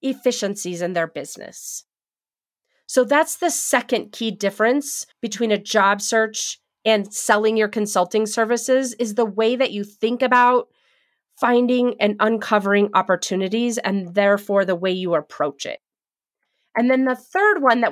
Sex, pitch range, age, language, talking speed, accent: female, 200-245 Hz, 30-49, English, 145 wpm, American